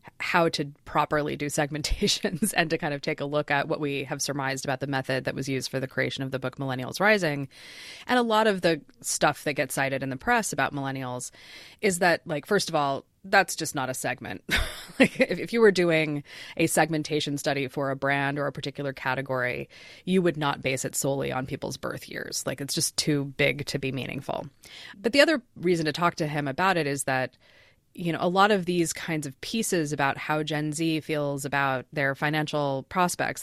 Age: 20-39